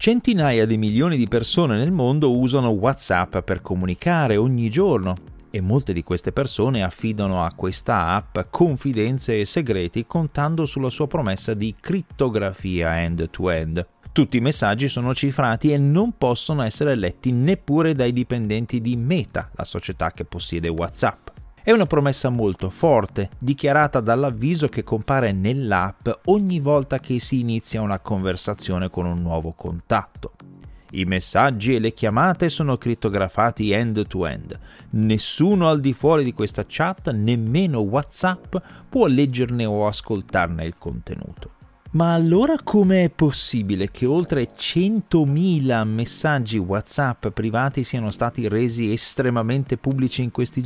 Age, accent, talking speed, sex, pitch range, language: 30-49, native, 140 wpm, male, 100-145 Hz, Italian